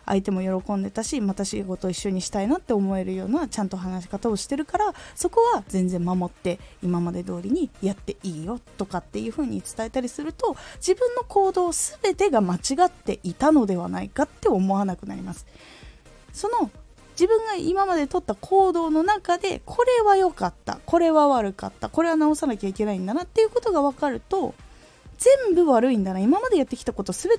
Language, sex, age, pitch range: Japanese, female, 20-39, 200-325 Hz